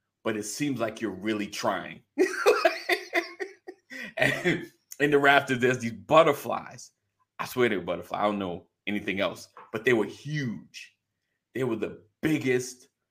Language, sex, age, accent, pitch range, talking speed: English, male, 30-49, American, 100-140 Hz, 145 wpm